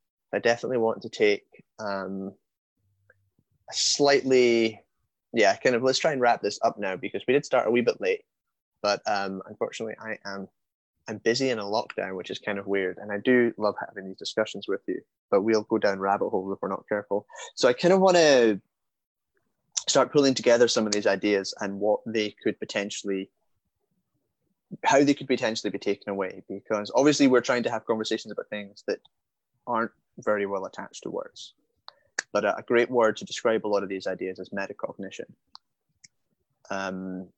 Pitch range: 100-125 Hz